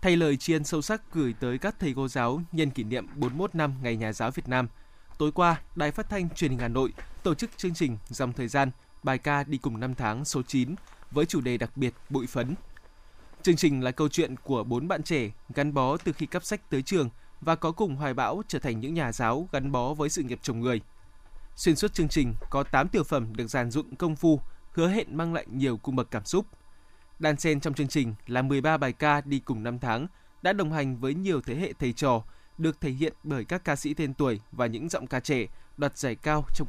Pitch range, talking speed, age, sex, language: 125-155 Hz, 240 wpm, 20-39, male, Vietnamese